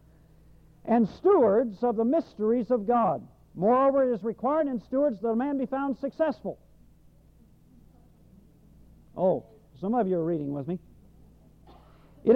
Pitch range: 195-250 Hz